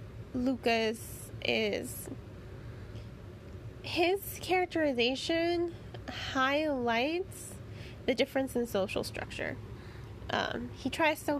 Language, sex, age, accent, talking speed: English, female, 20-39, American, 75 wpm